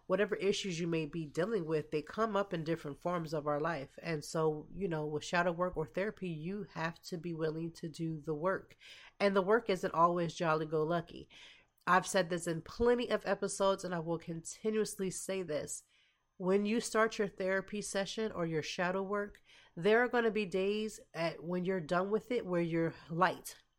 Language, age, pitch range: English, 30-49, 155-185 Hz